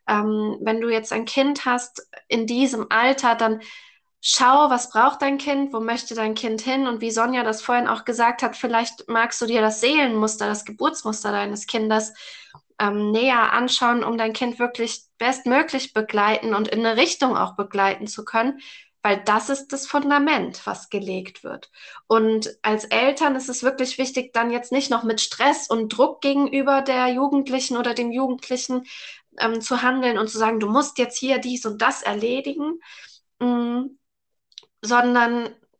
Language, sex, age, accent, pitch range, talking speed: German, female, 20-39, German, 220-260 Hz, 170 wpm